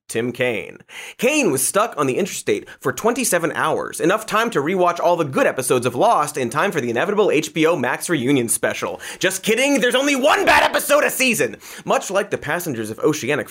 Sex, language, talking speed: male, English, 200 wpm